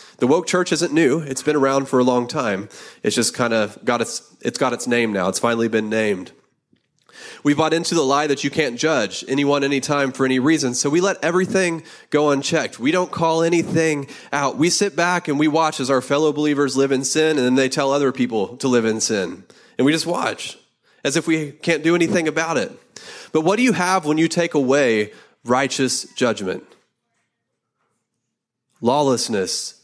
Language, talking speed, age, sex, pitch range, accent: English, 200 wpm, 30-49, male, 130-165 Hz, American